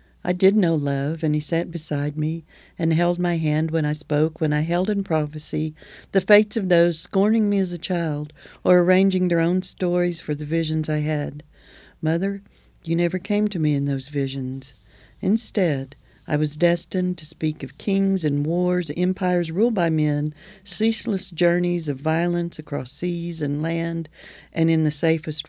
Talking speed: 175 wpm